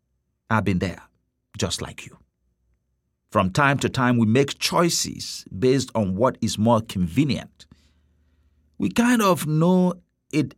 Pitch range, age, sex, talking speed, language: 80-120 Hz, 50-69, male, 135 wpm, English